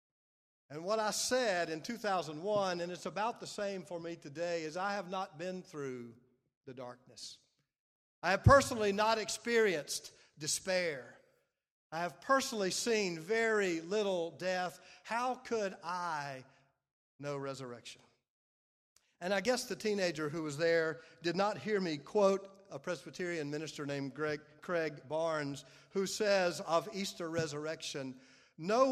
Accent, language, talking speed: American, English, 135 wpm